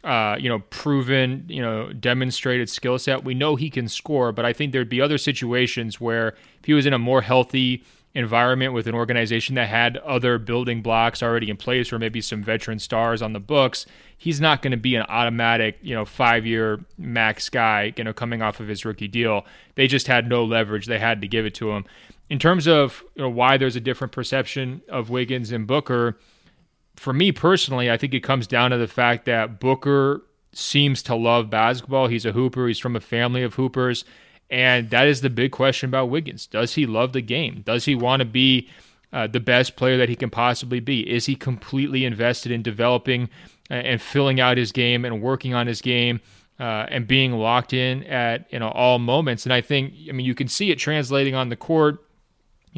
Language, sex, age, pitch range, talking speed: English, male, 30-49, 115-130 Hz, 215 wpm